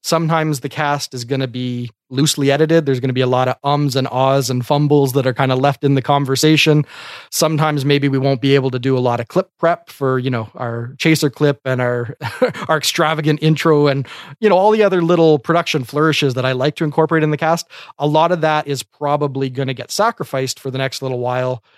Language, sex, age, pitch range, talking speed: English, male, 30-49, 135-160 Hz, 235 wpm